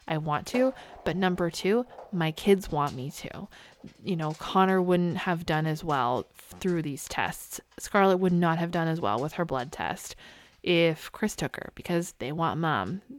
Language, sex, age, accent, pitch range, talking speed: English, female, 20-39, American, 160-195 Hz, 185 wpm